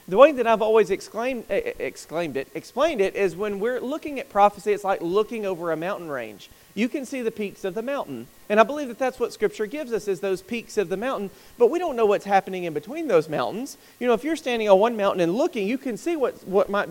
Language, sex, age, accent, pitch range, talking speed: English, male, 40-59, American, 185-245 Hz, 255 wpm